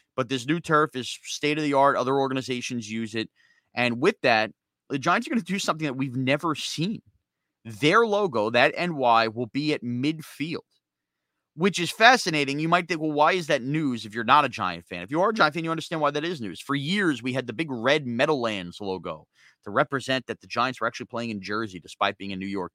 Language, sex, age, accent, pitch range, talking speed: English, male, 30-49, American, 115-155 Hz, 225 wpm